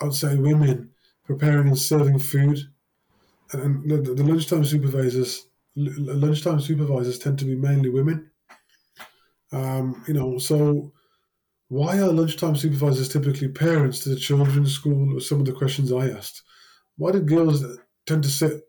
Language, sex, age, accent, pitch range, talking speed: English, male, 20-39, British, 135-155 Hz, 150 wpm